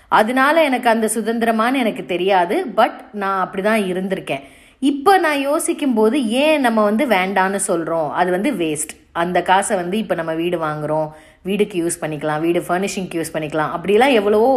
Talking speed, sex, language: 155 wpm, female, Tamil